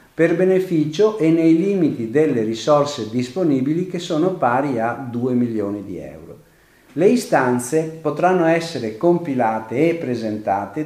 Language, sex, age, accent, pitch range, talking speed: Italian, male, 50-69, native, 115-160 Hz, 125 wpm